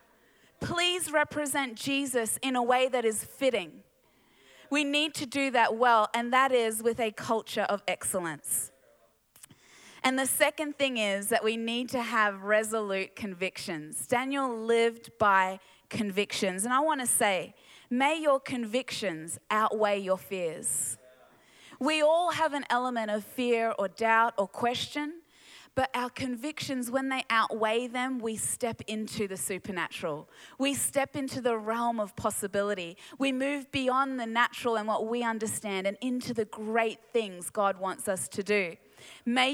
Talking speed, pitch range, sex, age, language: 150 wpm, 210-260 Hz, female, 20-39, English